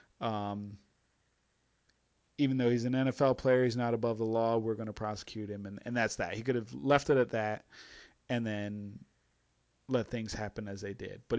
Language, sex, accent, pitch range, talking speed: English, male, American, 110-130 Hz, 195 wpm